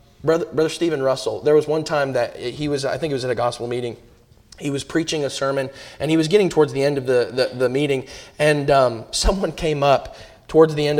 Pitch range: 130-160 Hz